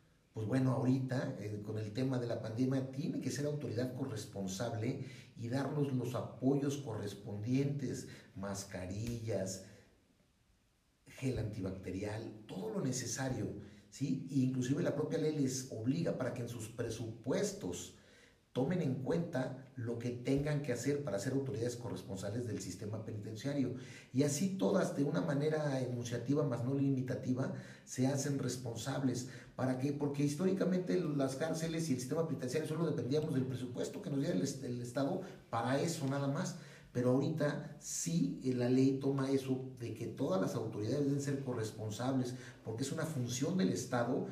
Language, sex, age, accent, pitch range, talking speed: Spanish, male, 50-69, Mexican, 120-145 Hz, 150 wpm